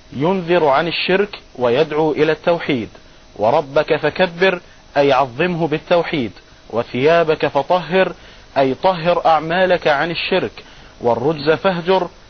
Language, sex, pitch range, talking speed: Arabic, male, 150-175 Hz, 100 wpm